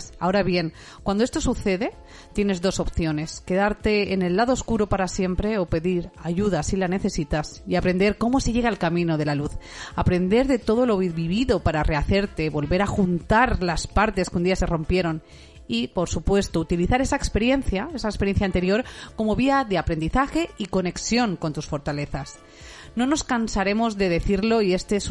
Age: 40-59